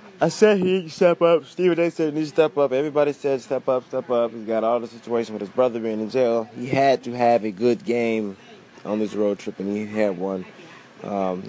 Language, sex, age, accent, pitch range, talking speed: English, male, 20-39, American, 110-145 Hz, 230 wpm